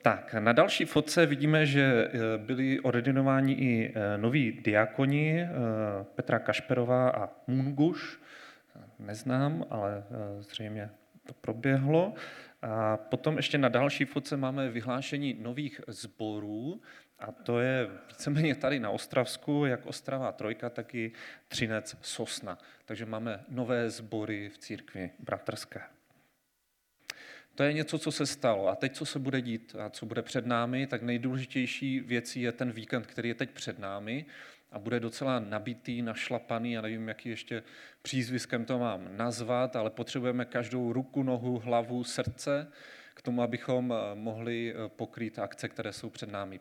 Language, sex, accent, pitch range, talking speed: Czech, male, native, 115-135 Hz, 140 wpm